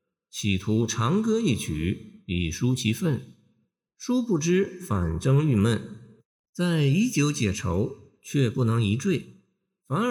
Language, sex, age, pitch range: Chinese, male, 50-69, 100-170 Hz